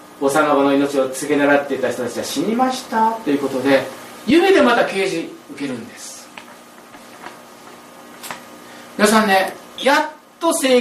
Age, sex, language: 40-59, male, Japanese